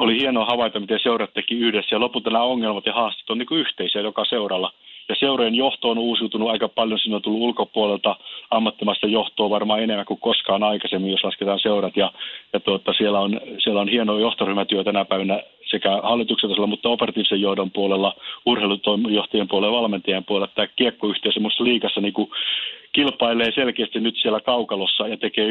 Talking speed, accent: 165 wpm, native